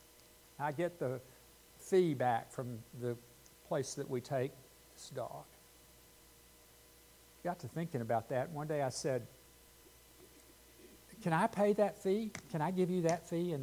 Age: 60-79